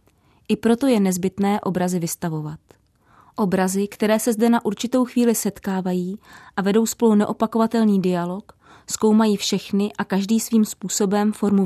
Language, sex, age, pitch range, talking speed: Czech, female, 20-39, 185-220 Hz, 135 wpm